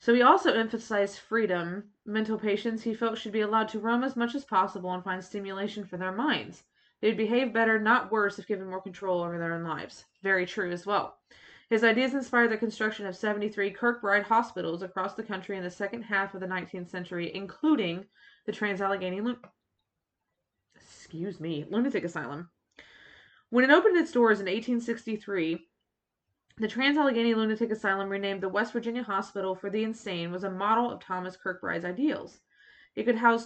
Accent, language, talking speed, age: American, English, 170 wpm, 20-39